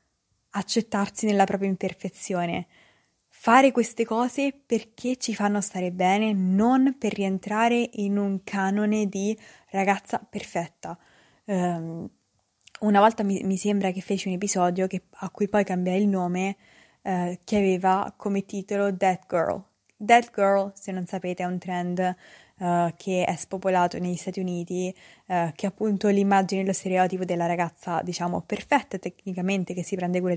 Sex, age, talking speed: female, 20-39, 150 wpm